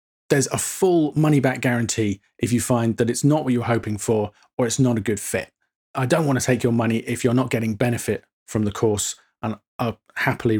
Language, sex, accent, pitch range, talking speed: English, male, British, 115-140 Hz, 220 wpm